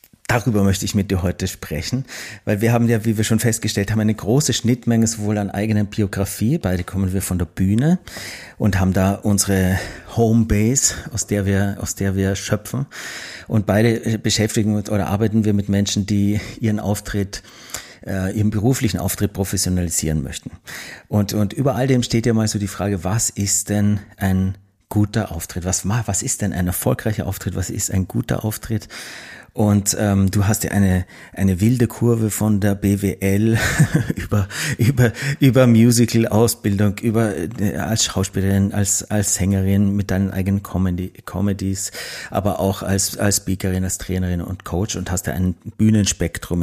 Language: German